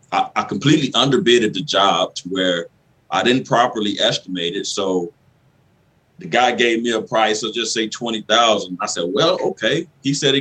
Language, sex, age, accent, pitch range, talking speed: English, male, 30-49, American, 100-130 Hz, 175 wpm